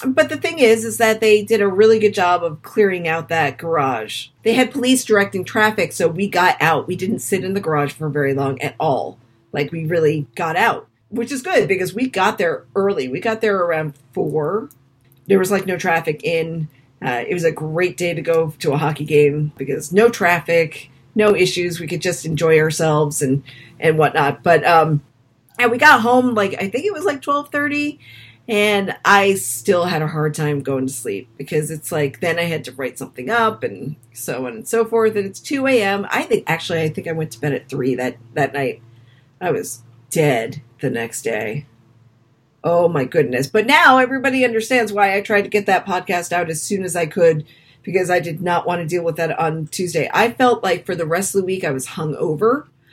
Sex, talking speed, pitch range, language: female, 220 wpm, 145-210 Hz, English